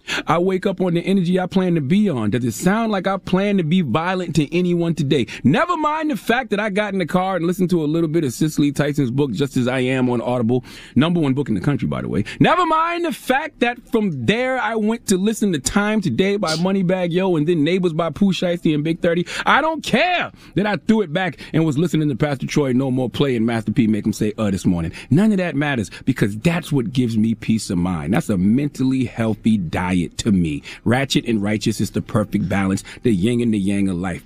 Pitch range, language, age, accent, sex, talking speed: 115-185 Hz, English, 30-49, American, male, 250 wpm